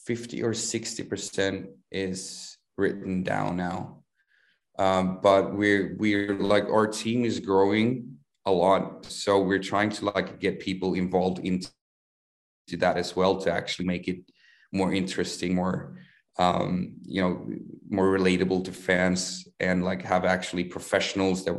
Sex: male